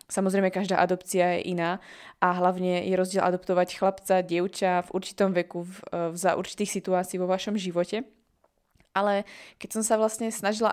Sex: female